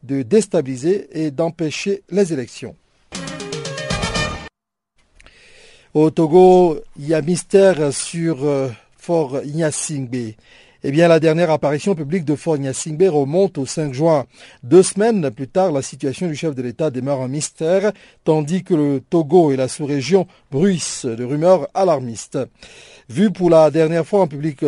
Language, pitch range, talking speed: French, 135-180 Hz, 145 wpm